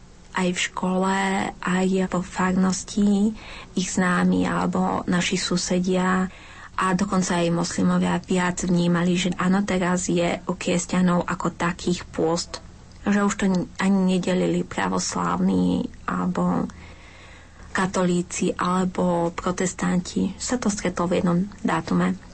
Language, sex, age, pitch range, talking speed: Slovak, female, 30-49, 170-185 Hz, 115 wpm